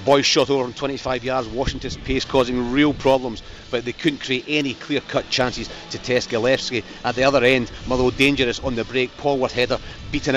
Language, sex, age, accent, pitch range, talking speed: English, male, 40-59, British, 120-140 Hz, 195 wpm